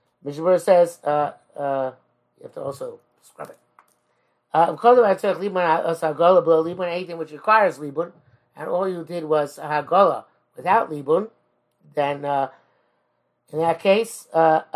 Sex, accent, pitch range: male, American, 145-180 Hz